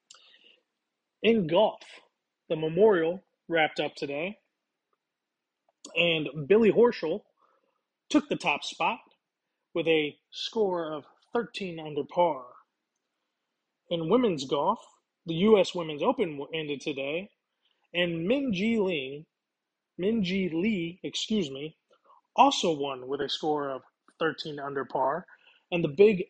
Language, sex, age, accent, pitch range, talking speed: English, male, 20-39, American, 155-195 Hz, 110 wpm